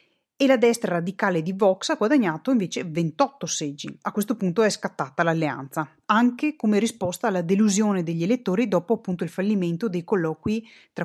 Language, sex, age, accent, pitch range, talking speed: Italian, female, 30-49, native, 170-230 Hz, 170 wpm